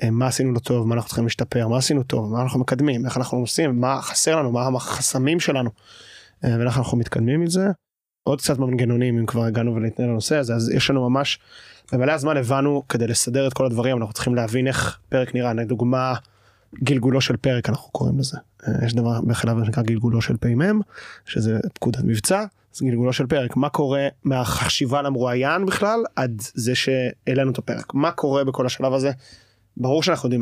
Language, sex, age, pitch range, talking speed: Hebrew, male, 20-39, 120-135 Hz, 160 wpm